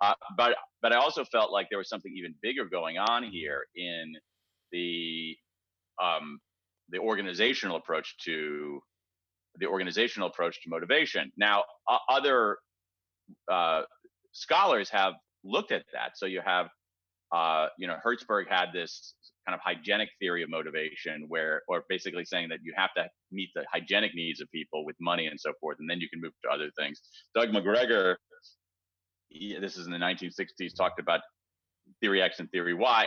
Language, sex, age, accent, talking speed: English, male, 30-49, American, 170 wpm